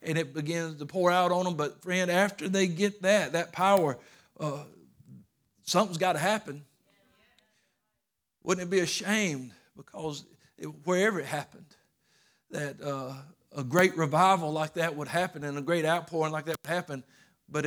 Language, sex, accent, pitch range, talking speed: English, male, American, 150-180 Hz, 165 wpm